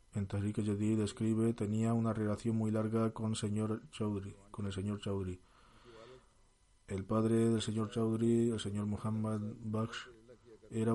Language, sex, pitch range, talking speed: Spanish, male, 105-115 Hz, 140 wpm